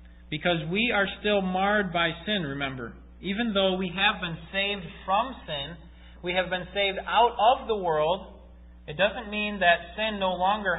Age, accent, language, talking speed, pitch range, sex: 40-59, American, English, 170 wpm, 135-185 Hz, male